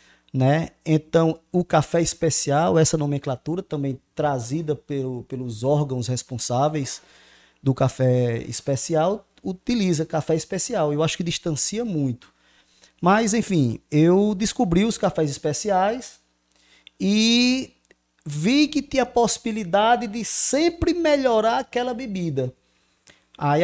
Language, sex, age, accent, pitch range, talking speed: Portuguese, male, 20-39, Brazilian, 145-210 Hz, 105 wpm